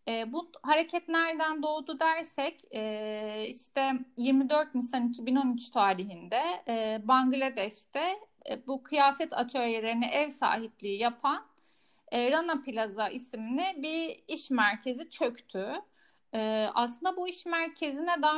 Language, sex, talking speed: Turkish, female, 115 wpm